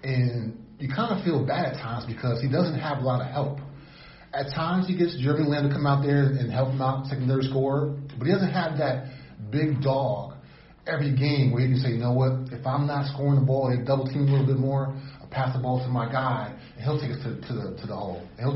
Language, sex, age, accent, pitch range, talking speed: English, male, 30-49, American, 120-140 Hz, 265 wpm